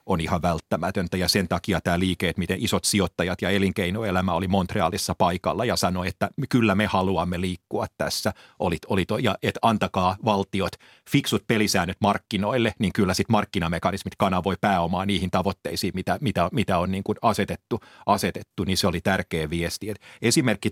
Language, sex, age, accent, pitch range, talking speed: Finnish, male, 30-49, native, 95-110 Hz, 165 wpm